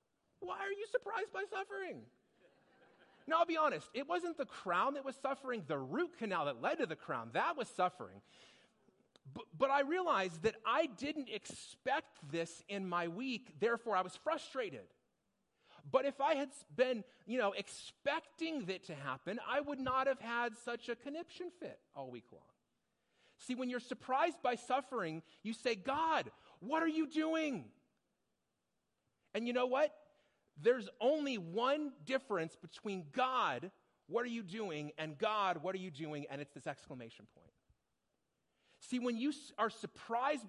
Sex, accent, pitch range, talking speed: male, American, 195-285 Hz, 160 wpm